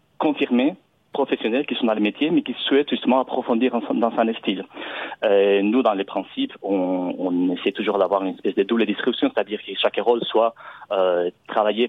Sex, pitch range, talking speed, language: male, 100-150 Hz, 185 wpm, French